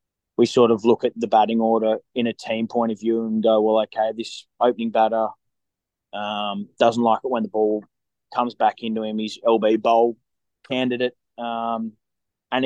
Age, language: 20-39, English